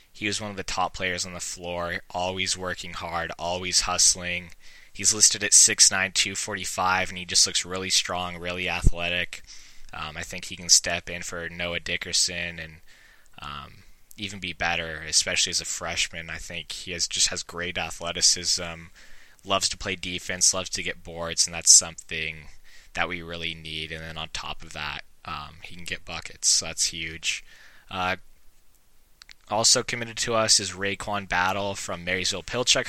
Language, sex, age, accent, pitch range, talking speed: English, male, 10-29, American, 85-100 Hz, 175 wpm